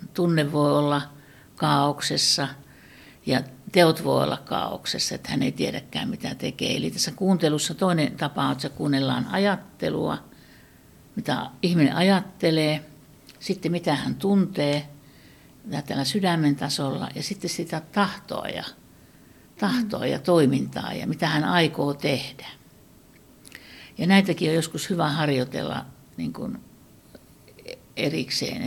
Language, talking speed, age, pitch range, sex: Finnish, 115 wpm, 60-79, 145-190 Hz, female